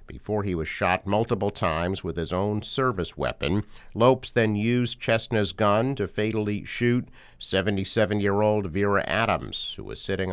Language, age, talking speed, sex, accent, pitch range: English, 50-69, 145 wpm, male, American, 95-125 Hz